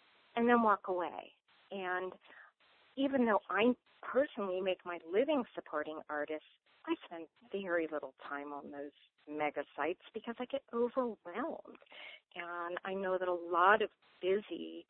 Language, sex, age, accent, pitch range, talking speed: English, female, 40-59, American, 150-200 Hz, 140 wpm